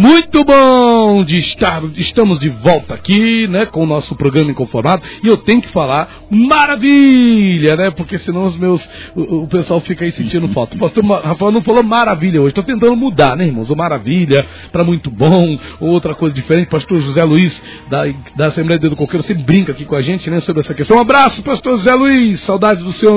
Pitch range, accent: 150-195 Hz, Brazilian